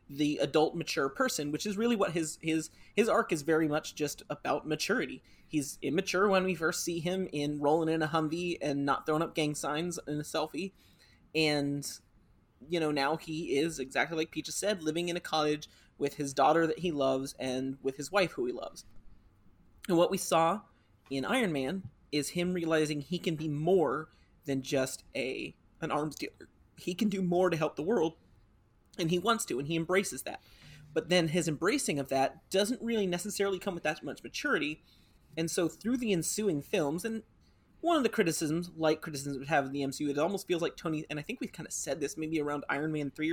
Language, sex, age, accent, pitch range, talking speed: English, male, 30-49, American, 145-185 Hz, 210 wpm